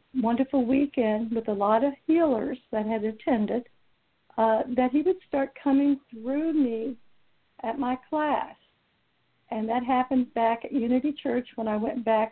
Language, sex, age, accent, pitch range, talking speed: English, female, 60-79, American, 230-275 Hz, 155 wpm